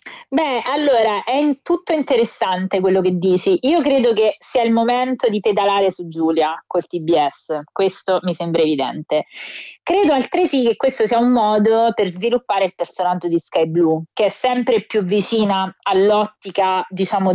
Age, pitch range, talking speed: 20-39, 185-220 Hz, 155 wpm